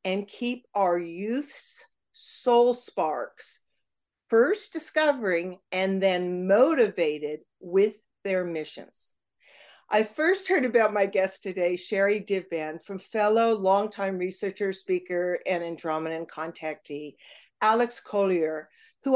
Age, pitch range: 50-69, 180-235 Hz